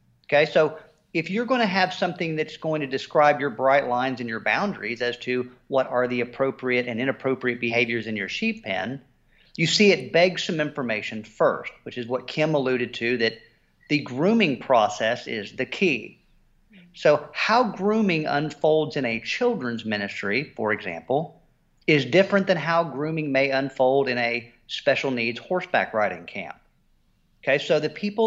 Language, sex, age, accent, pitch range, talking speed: English, male, 40-59, American, 125-170 Hz, 170 wpm